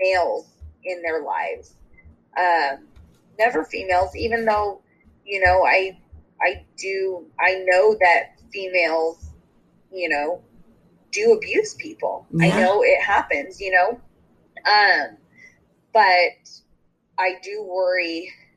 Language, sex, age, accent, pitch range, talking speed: English, female, 20-39, American, 165-210 Hz, 110 wpm